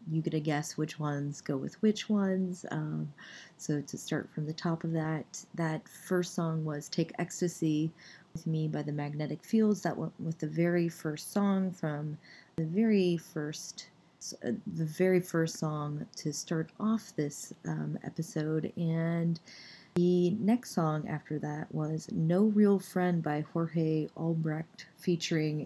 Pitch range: 155-185 Hz